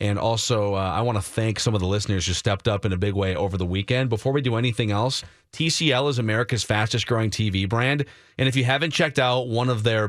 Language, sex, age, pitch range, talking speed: English, male, 30-49, 115-150 Hz, 245 wpm